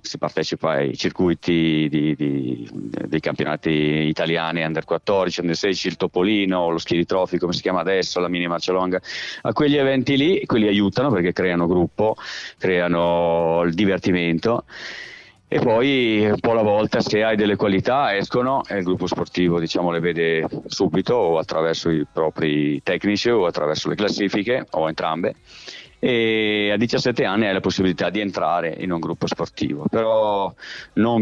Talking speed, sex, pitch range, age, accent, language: 155 wpm, male, 85-105 Hz, 40-59, native, Italian